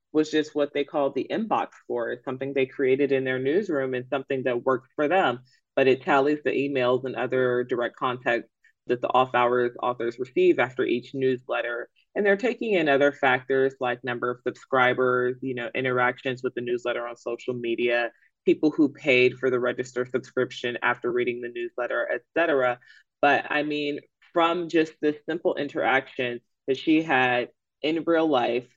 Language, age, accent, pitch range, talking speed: English, 20-39, American, 125-145 Hz, 170 wpm